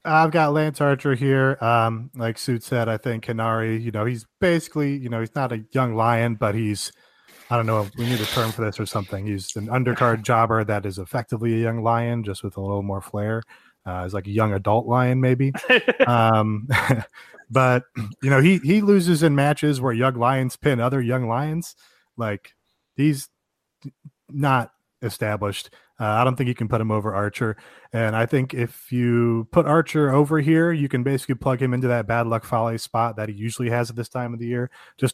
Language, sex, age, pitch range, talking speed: English, male, 30-49, 110-130 Hz, 210 wpm